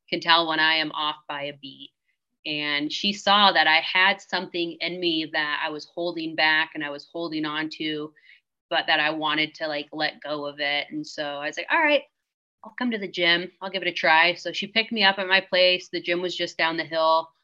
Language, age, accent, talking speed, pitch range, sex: English, 30-49, American, 245 wpm, 155-180 Hz, female